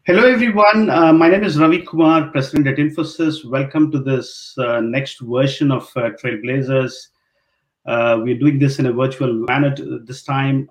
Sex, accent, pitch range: male, Indian, 120-150 Hz